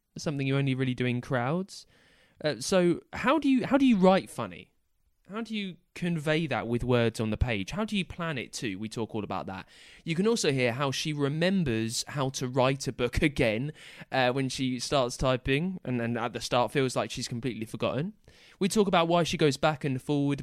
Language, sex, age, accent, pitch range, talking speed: English, male, 20-39, British, 115-155 Hz, 220 wpm